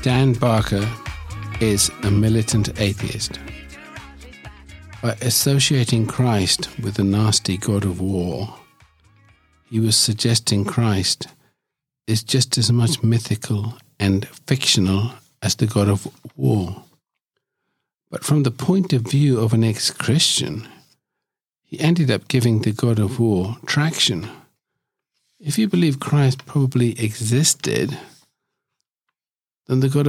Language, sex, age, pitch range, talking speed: English, male, 50-69, 105-130 Hz, 115 wpm